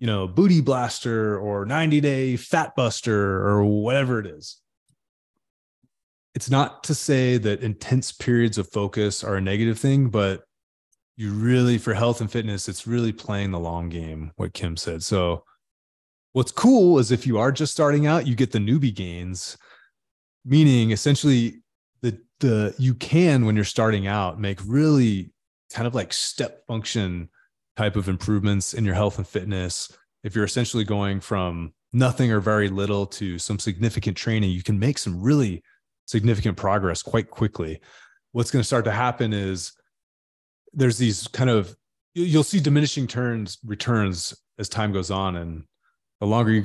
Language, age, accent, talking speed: English, 20-39, American, 165 wpm